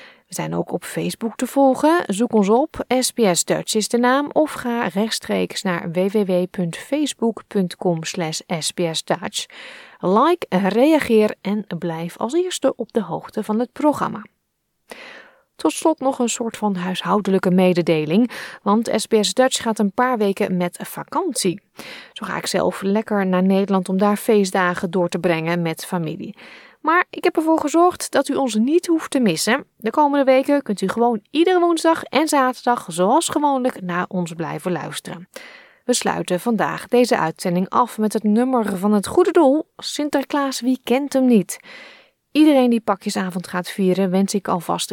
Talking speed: 155 wpm